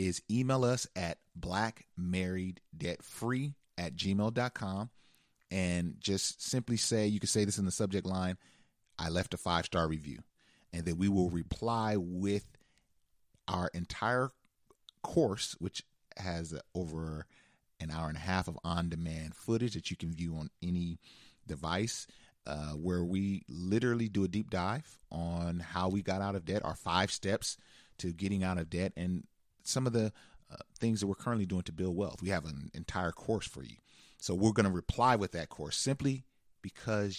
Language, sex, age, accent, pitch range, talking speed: English, male, 30-49, American, 85-110 Hz, 170 wpm